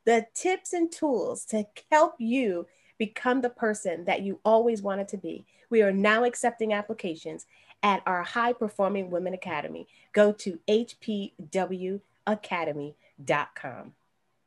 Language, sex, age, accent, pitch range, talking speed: English, female, 30-49, American, 195-270 Hz, 125 wpm